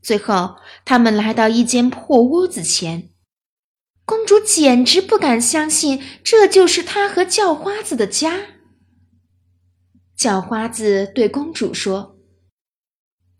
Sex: female